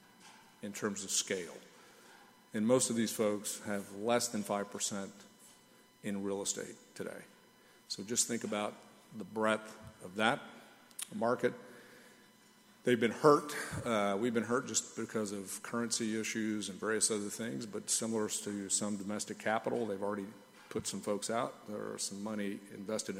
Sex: male